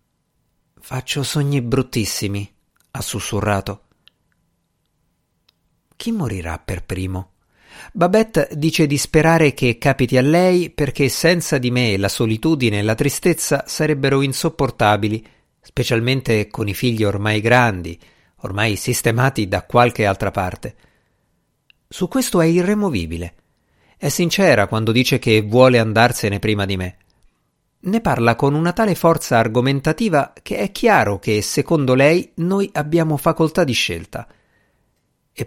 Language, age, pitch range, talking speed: Italian, 50-69, 105-150 Hz, 125 wpm